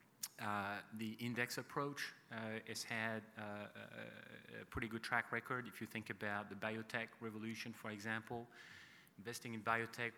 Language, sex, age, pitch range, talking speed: English, male, 30-49, 105-120 Hz, 155 wpm